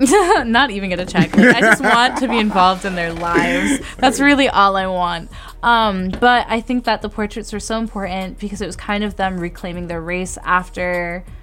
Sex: female